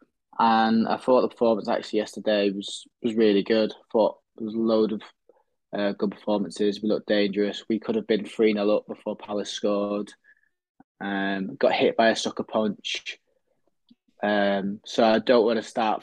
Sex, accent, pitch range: male, British, 105-115 Hz